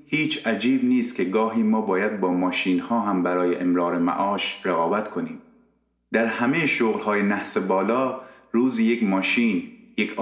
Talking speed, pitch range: 155 wpm, 95-140 Hz